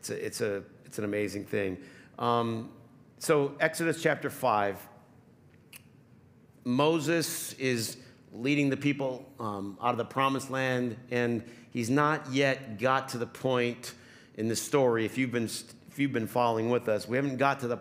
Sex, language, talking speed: male, English, 165 wpm